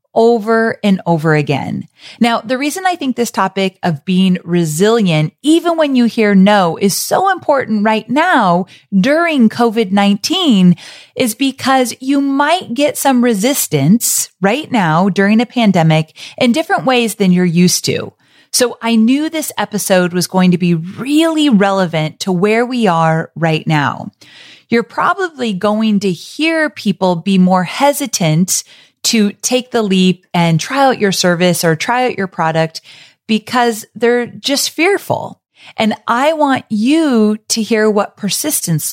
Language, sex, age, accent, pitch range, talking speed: English, female, 30-49, American, 180-250 Hz, 150 wpm